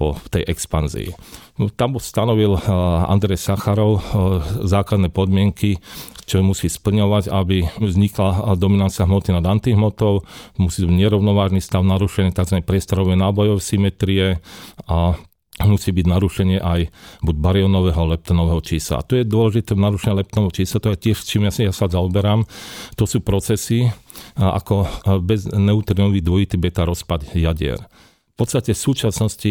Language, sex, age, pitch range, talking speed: Slovak, male, 40-59, 90-105 Hz, 125 wpm